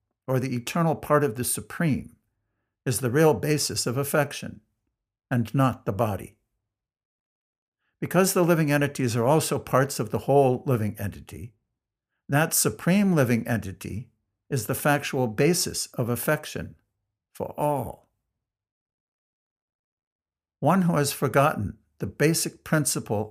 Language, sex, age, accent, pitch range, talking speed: English, male, 60-79, American, 110-145 Hz, 125 wpm